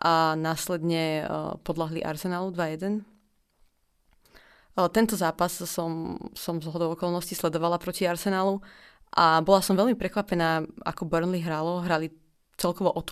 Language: Slovak